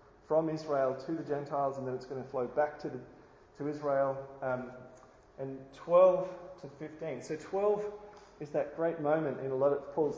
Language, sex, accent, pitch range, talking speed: English, male, Australian, 125-155 Hz, 190 wpm